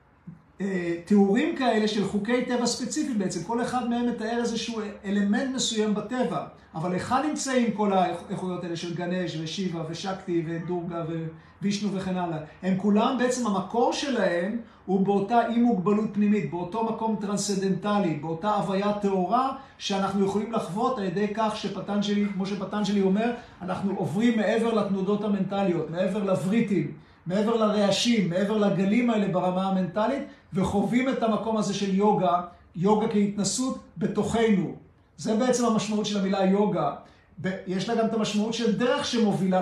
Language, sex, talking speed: Hebrew, male, 140 wpm